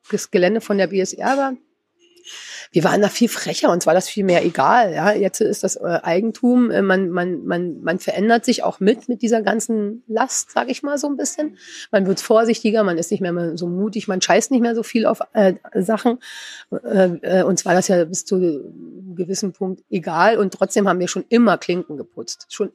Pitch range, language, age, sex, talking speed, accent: 190-230 Hz, German, 30-49, female, 205 wpm, German